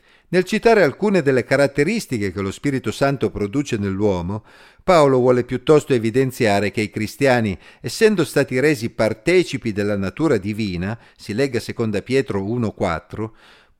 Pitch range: 100-140 Hz